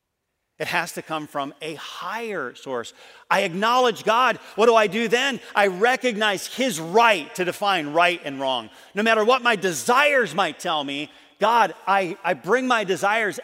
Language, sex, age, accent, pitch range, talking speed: English, male, 40-59, American, 130-195 Hz, 175 wpm